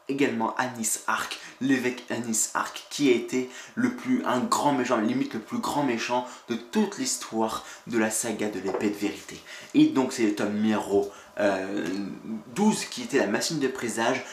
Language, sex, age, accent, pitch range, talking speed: French, male, 20-39, French, 105-135 Hz, 180 wpm